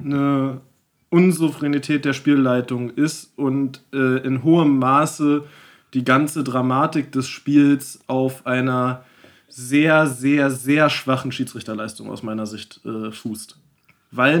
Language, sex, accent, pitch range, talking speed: German, male, German, 135-170 Hz, 115 wpm